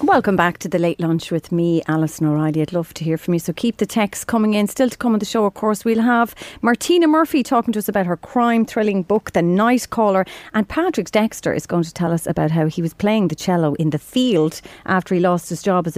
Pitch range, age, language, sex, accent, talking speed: 165-220 Hz, 40-59, English, female, Irish, 255 wpm